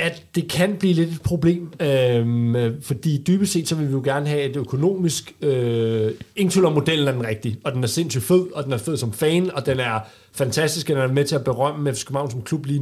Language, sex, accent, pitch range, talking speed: Danish, male, native, 130-170 Hz, 240 wpm